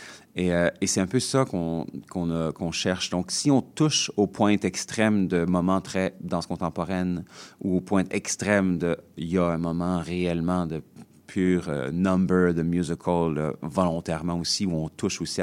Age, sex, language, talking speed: 30-49, male, French, 190 wpm